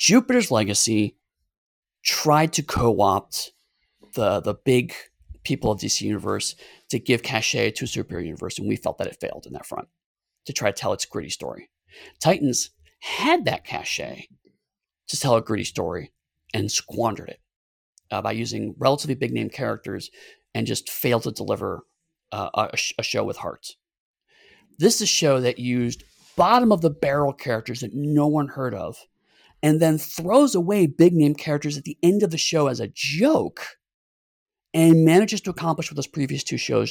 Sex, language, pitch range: male, English, 115-165 Hz